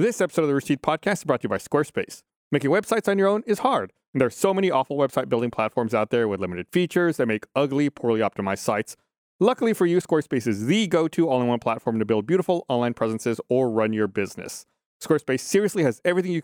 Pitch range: 120-170 Hz